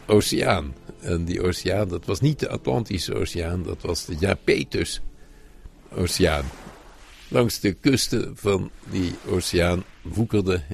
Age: 60-79